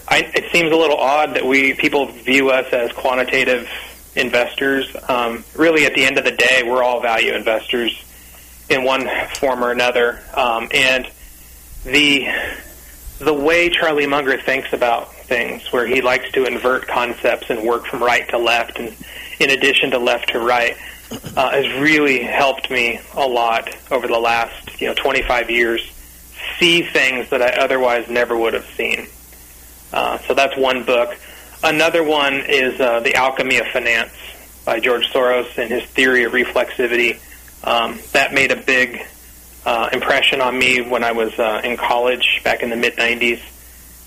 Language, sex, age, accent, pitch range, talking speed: English, male, 30-49, American, 105-135 Hz, 170 wpm